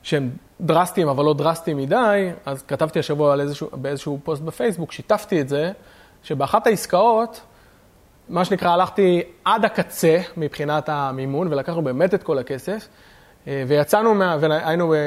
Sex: male